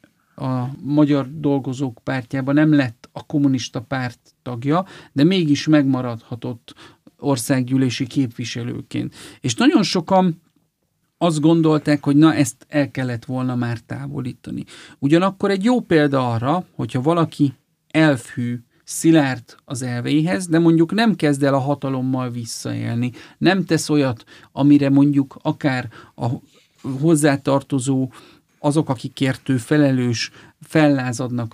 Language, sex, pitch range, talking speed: Hungarian, male, 125-150 Hz, 115 wpm